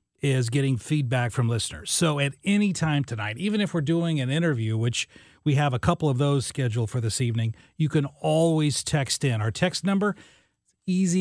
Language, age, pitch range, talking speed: English, 40-59, 130-170 Hz, 195 wpm